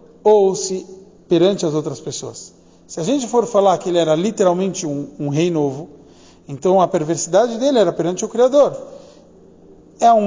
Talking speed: 170 wpm